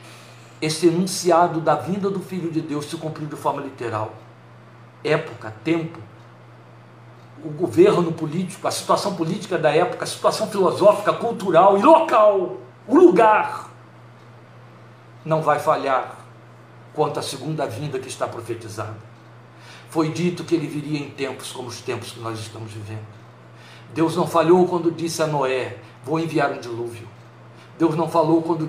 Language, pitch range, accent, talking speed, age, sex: Portuguese, 115-160 Hz, Brazilian, 145 wpm, 60-79, male